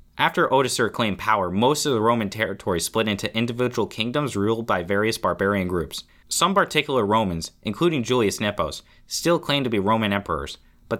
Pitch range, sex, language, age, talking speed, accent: 90-115 Hz, male, English, 20-39, 170 wpm, American